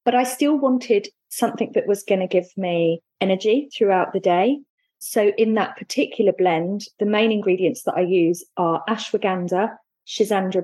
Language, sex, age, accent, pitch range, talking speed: English, female, 30-49, British, 180-225 Hz, 165 wpm